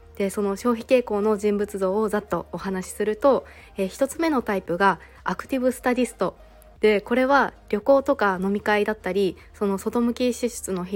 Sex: female